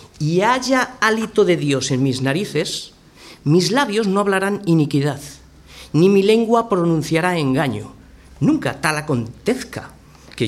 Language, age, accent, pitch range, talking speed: Spanish, 40-59, Spanish, 140-210 Hz, 125 wpm